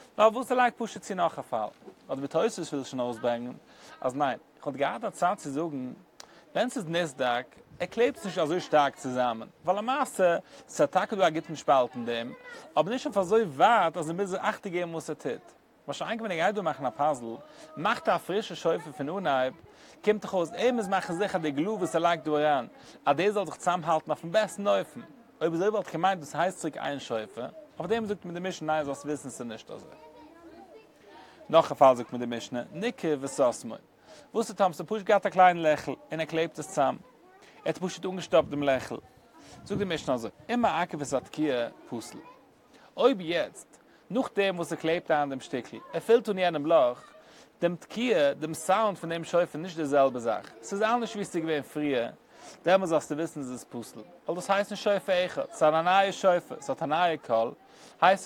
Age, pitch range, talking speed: 30-49, 145-200 Hz, 215 wpm